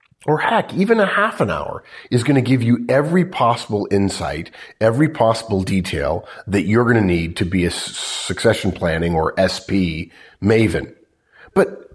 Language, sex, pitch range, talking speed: English, male, 100-140 Hz, 160 wpm